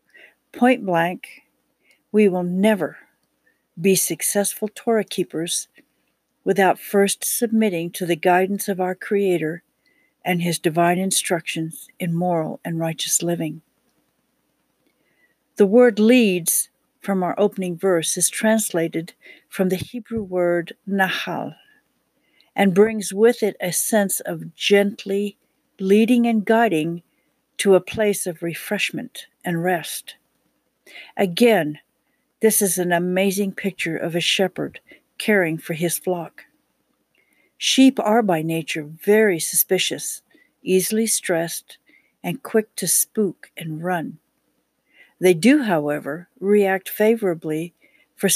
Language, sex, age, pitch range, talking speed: English, female, 60-79, 170-210 Hz, 115 wpm